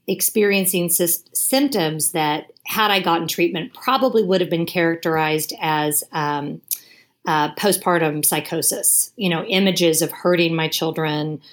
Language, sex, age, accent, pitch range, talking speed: English, female, 40-59, American, 160-195 Hz, 125 wpm